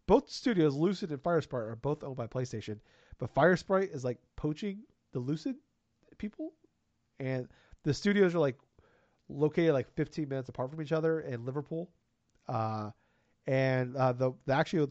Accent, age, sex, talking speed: American, 30-49, male, 155 wpm